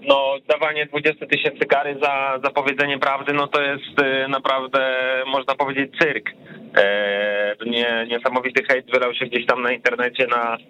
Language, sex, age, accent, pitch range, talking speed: Polish, male, 20-39, native, 120-135 Hz, 145 wpm